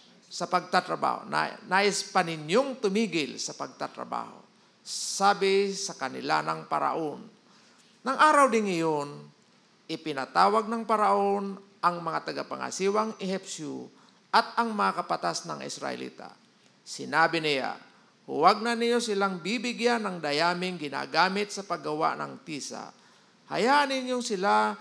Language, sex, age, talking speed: Filipino, male, 50-69, 115 wpm